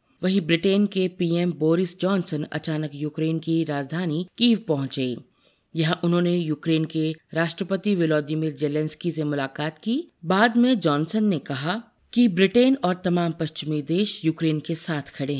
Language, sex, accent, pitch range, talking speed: Hindi, female, native, 150-200 Hz, 145 wpm